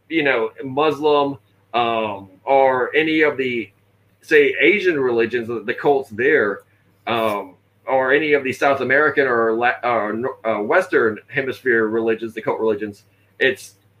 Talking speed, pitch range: 135 wpm, 120-180 Hz